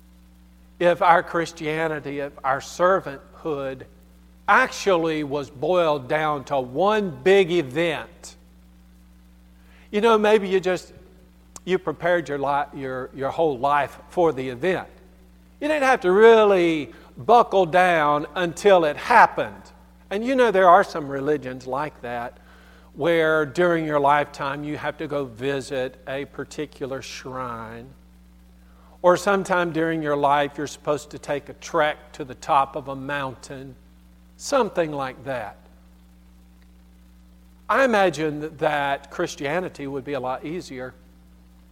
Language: English